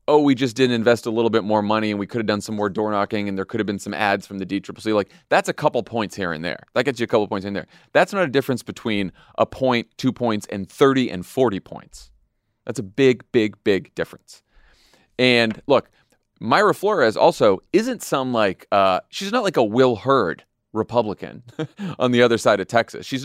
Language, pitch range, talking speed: English, 110-165 Hz, 225 wpm